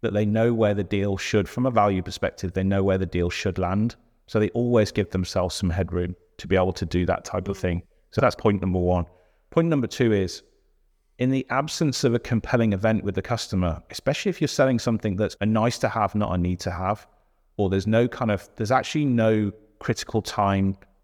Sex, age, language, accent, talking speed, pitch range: male, 30-49, English, British, 220 wpm, 95-110 Hz